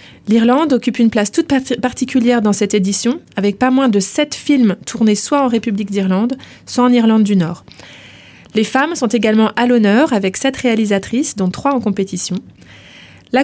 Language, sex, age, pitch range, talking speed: English, female, 20-39, 205-260 Hz, 175 wpm